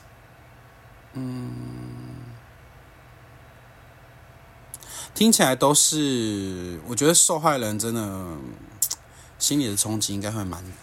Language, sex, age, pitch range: Chinese, male, 30-49, 100-130 Hz